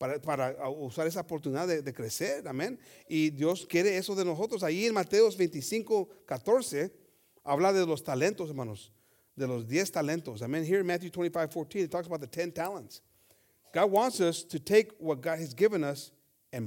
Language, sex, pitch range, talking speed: English, male, 140-180 Hz, 175 wpm